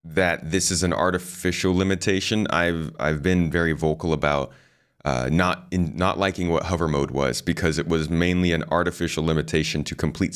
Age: 30-49